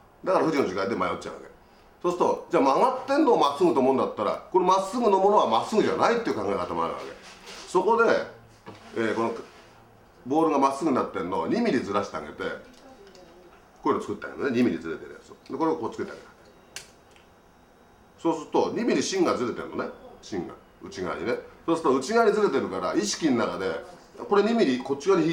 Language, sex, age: Japanese, male, 40-59